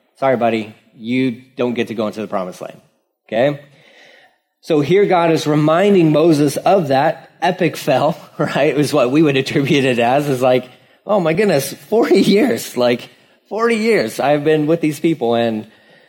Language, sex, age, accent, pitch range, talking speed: English, male, 30-49, American, 125-160 Hz, 175 wpm